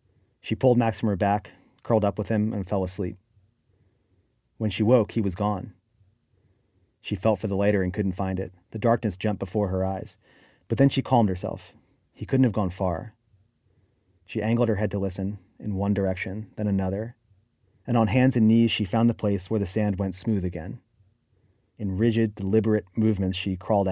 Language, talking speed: English, 190 wpm